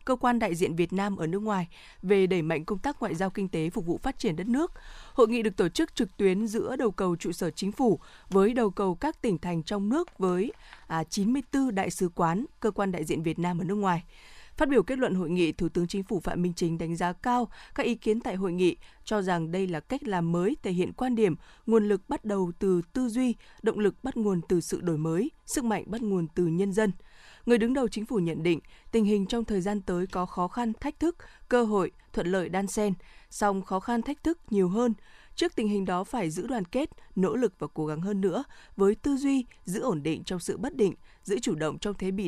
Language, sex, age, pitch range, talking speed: Vietnamese, female, 20-39, 180-235 Hz, 250 wpm